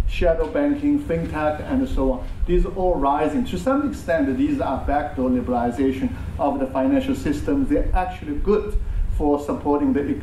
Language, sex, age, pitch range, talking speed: English, male, 50-69, 130-175 Hz, 165 wpm